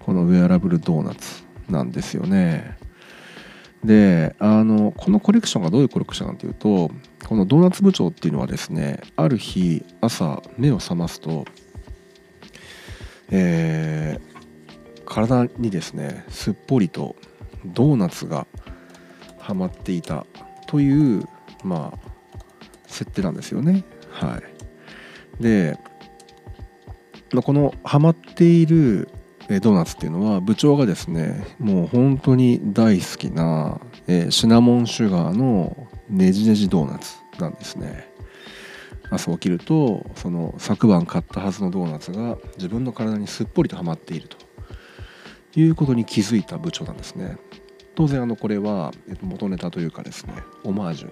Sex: male